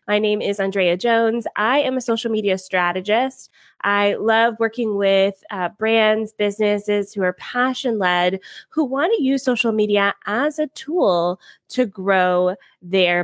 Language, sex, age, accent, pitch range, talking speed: English, female, 20-39, American, 185-240 Hz, 150 wpm